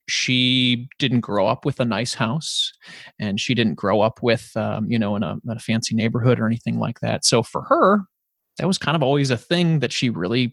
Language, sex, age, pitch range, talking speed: English, male, 30-49, 115-155 Hz, 230 wpm